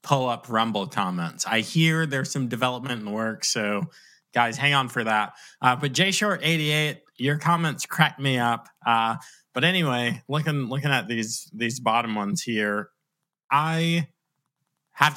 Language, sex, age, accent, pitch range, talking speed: English, male, 30-49, American, 110-145 Hz, 150 wpm